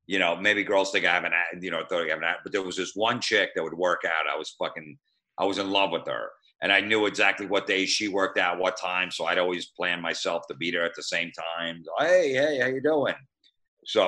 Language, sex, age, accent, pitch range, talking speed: English, male, 50-69, American, 95-120 Hz, 260 wpm